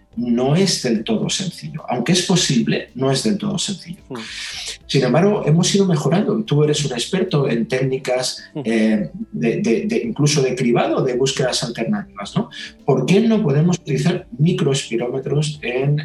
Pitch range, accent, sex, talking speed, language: 125-185 Hz, Spanish, male, 140 wpm, Spanish